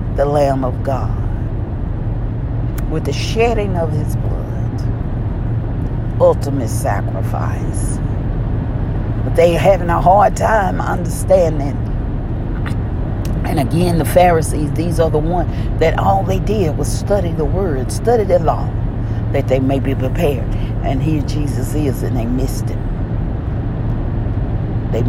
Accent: American